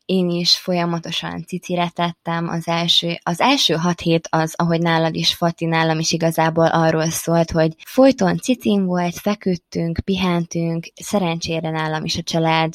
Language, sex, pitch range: Hungarian, female, 165-190 Hz